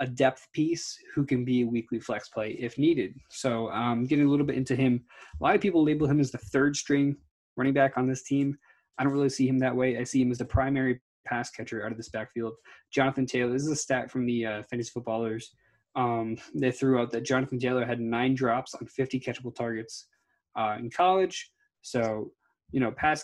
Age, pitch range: 20-39, 120-140 Hz